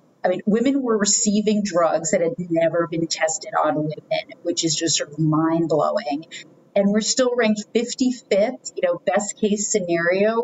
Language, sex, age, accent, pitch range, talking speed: English, female, 40-59, American, 170-215 Hz, 175 wpm